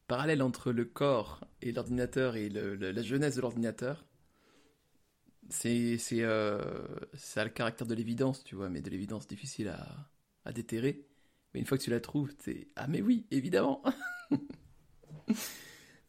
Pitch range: 110-135 Hz